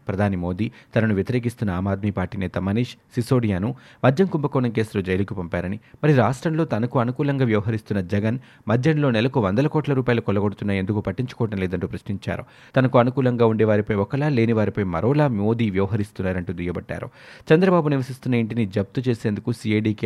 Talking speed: 110 wpm